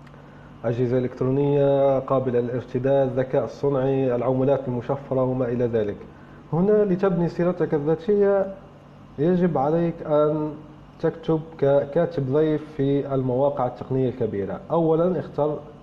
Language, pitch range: Arabic, 130-155 Hz